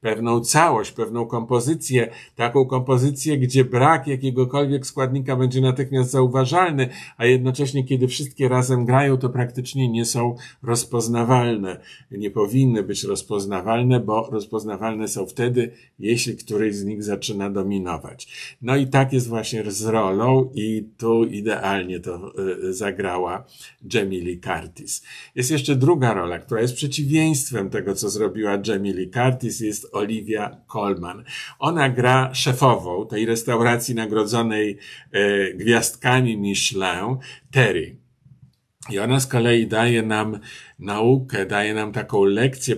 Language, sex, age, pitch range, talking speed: Polish, male, 50-69, 110-130 Hz, 125 wpm